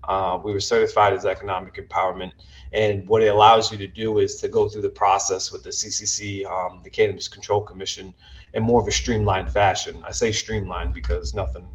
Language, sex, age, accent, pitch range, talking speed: English, male, 20-39, American, 95-120 Hz, 200 wpm